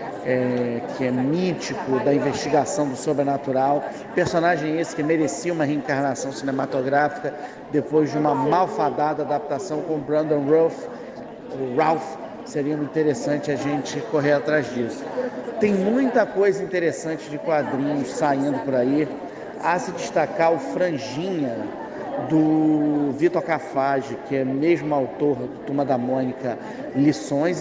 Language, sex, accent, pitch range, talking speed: Portuguese, male, Brazilian, 140-160 Hz, 130 wpm